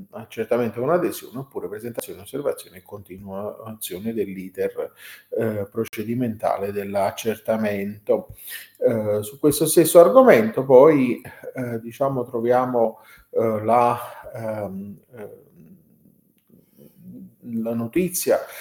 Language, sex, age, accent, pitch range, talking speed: Italian, male, 40-59, native, 110-145 Hz, 90 wpm